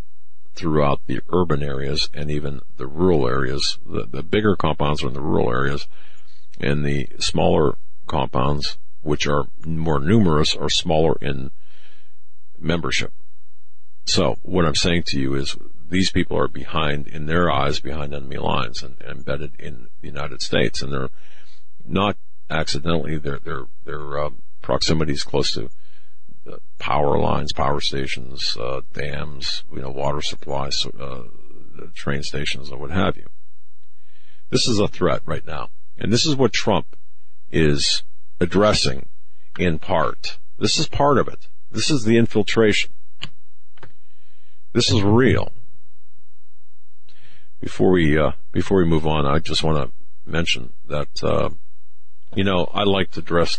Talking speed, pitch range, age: 145 wpm, 70-90 Hz, 50-69